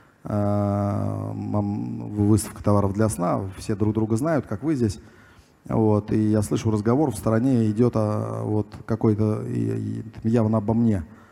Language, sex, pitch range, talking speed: Russian, male, 105-120 Hz, 115 wpm